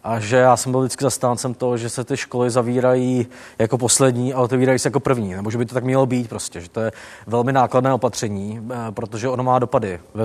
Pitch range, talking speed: 115-130 Hz, 230 wpm